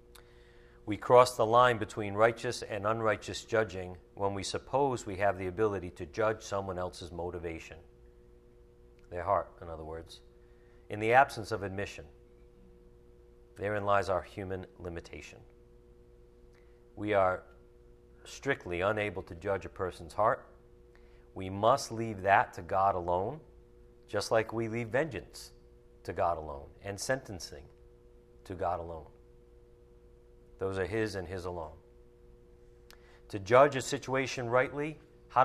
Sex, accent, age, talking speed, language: male, American, 50-69, 130 wpm, English